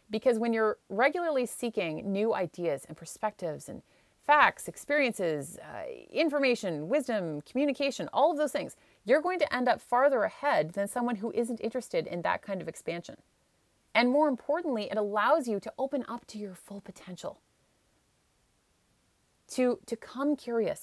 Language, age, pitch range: English, 30-49, 195-275 Hz